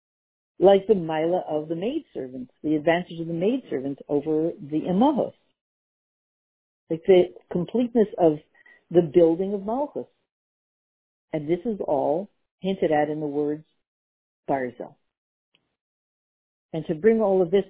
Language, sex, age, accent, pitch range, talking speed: English, female, 60-79, American, 155-210 Hz, 130 wpm